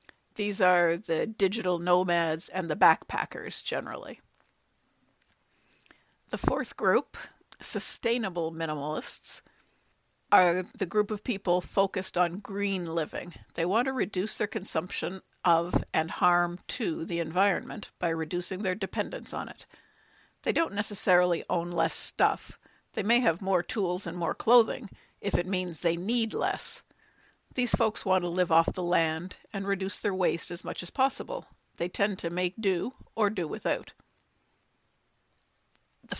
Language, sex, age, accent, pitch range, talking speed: English, female, 50-69, American, 170-200 Hz, 145 wpm